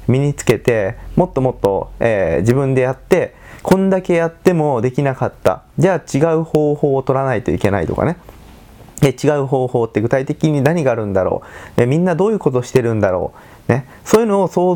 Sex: male